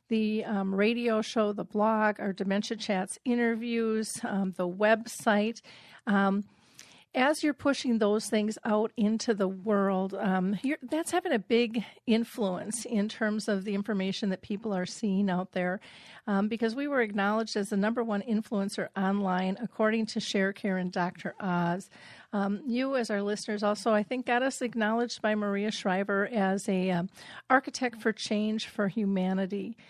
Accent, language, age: American, English, 50-69